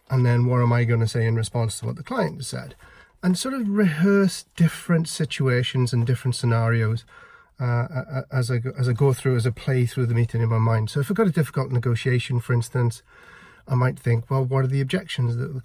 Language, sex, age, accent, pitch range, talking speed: English, male, 40-59, British, 120-150 Hz, 235 wpm